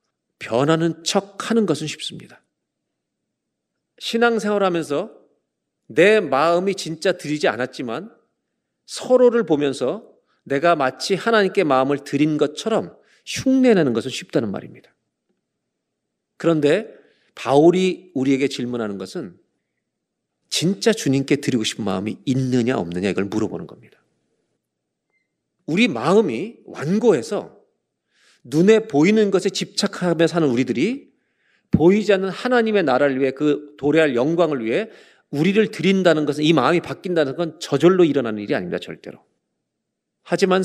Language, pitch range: Korean, 135-195 Hz